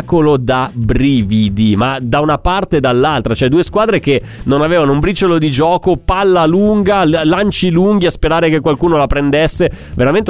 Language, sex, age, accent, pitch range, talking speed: Italian, male, 30-49, native, 135-175 Hz, 170 wpm